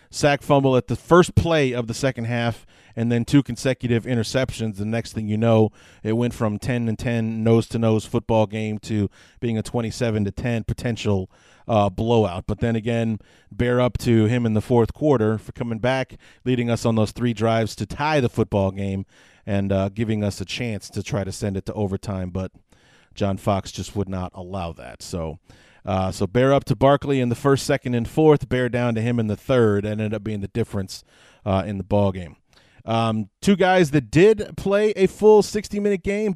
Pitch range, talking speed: 105-135 Hz, 210 wpm